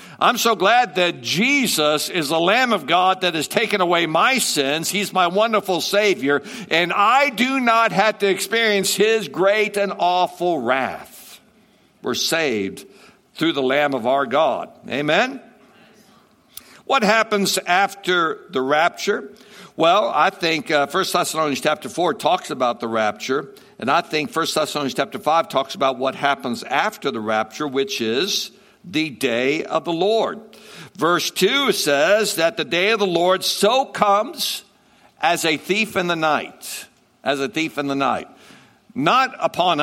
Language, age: English, 60-79